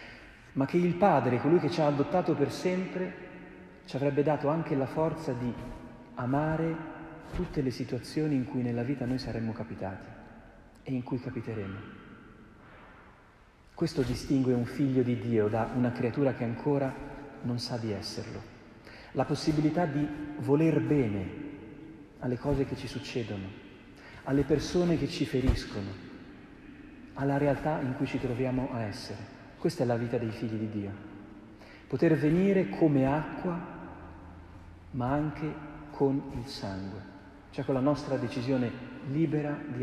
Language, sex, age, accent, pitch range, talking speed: Italian, male, 40-59, native, 110-140 Hz, 145 wpm